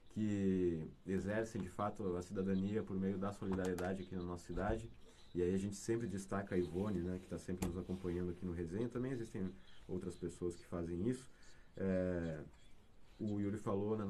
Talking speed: 185 wpm